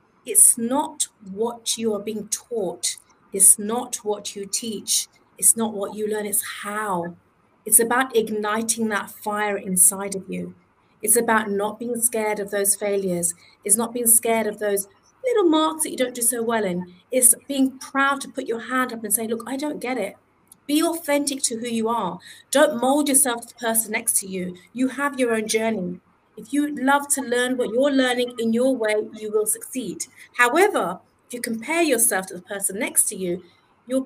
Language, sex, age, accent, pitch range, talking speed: Hindi, female, 30-49, British, 205-270 Hz, 195 wpm